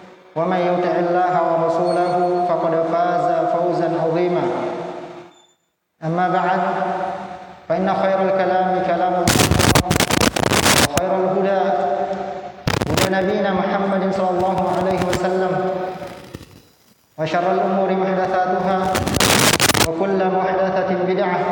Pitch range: 175-190 Hz